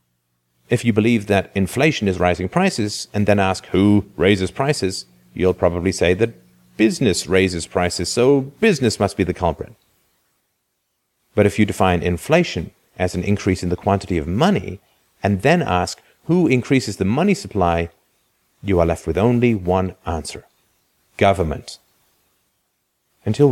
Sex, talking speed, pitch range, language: male, 145 wpm, 80-105 Hz, English